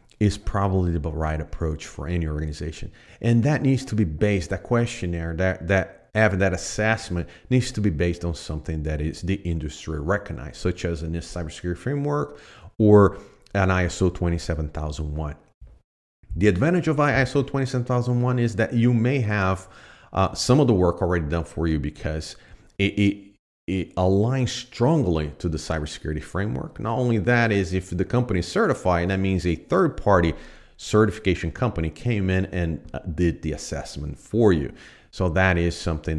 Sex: male